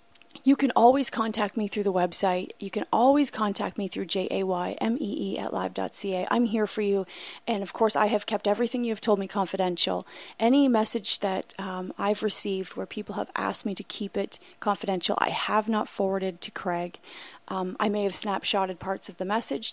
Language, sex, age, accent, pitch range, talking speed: English, female, 30-49, American, 190-215 Hz, 190 wpm